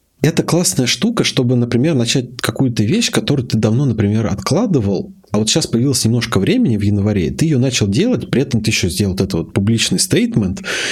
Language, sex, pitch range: Russian, male, 105-135 Hz